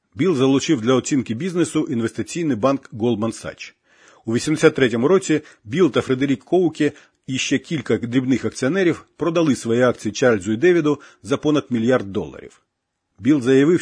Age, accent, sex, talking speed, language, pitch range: 40-59, native, male, 145 wpm, Ukrainian, 120-155 Hz